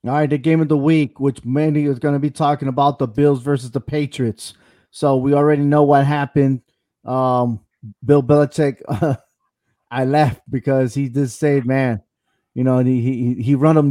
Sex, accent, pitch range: male, American, 125-150 Hz